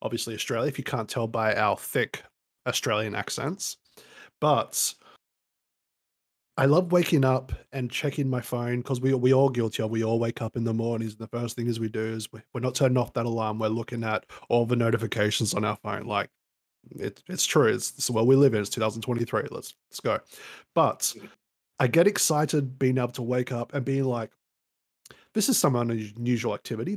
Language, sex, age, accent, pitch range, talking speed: English, male, 20-39, Australian, 115-140 Hz, 195 wpm